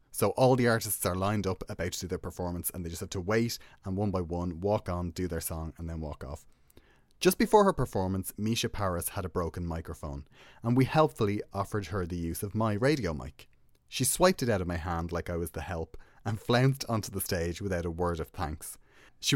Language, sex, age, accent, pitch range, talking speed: English, male, 30-49, Irish, 90-120 Hz, 235 wpm